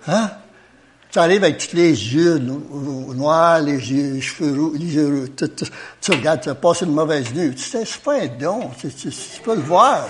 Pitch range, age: 130-165 Hz, 60-79